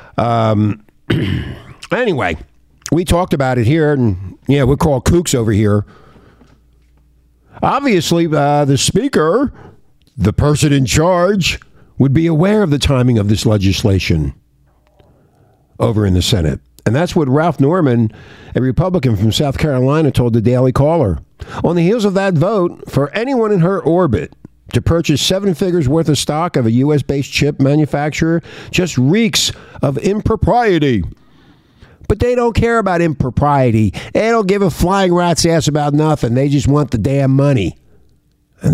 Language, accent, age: English, American, 50-69